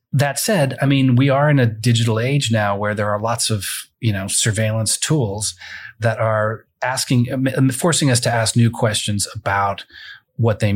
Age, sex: 30-49, male